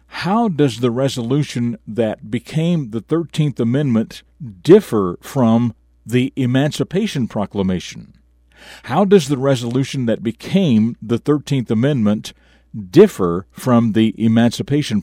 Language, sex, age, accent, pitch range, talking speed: English, male, 50-69, American, 95-130 Hz, 110 wpm